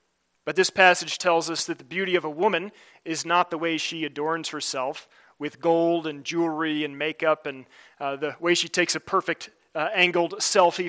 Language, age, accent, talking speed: English, 30-49, American, 195 wpm